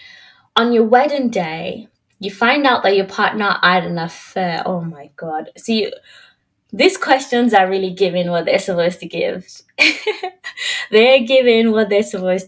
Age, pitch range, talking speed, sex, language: 20-39, 180-260 Hz, 155 wpm, female, English